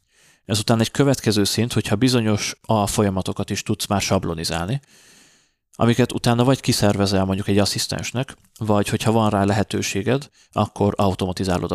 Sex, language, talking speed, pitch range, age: male, Hungarian, 135 wpm, 95-110 Hz, 30-49